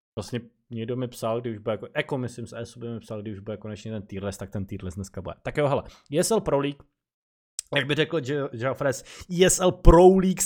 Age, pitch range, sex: 20-39, 120-145 Hz, male